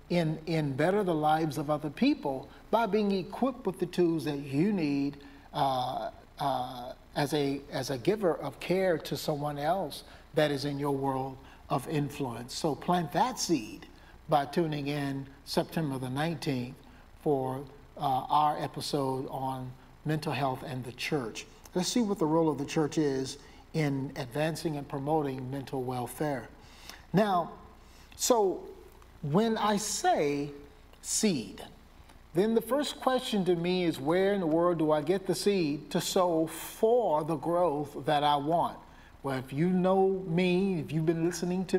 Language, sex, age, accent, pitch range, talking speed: English, male, 50-69, American, 145-180 Hz, 160 wpm